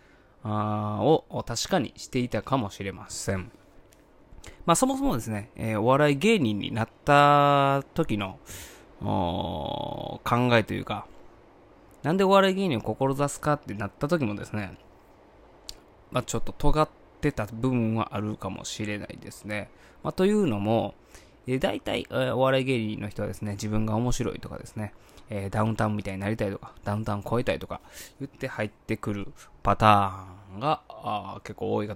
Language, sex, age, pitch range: Japanese, male, 20-39, 105-145 Hz